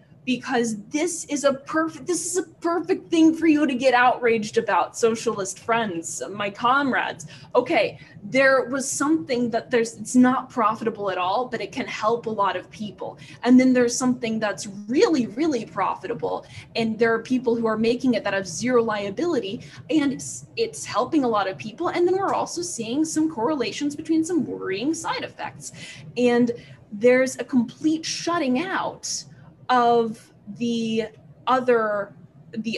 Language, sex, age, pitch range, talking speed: English, female, 20-39, 215-300 Hz, 165 wpm